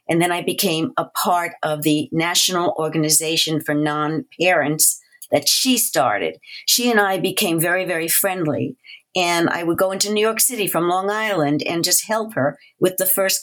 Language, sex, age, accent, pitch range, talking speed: English, female, 50-69, American, 170-280 Hz, 180 wpm